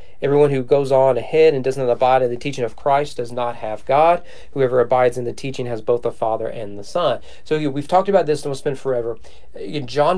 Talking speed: 230 wpm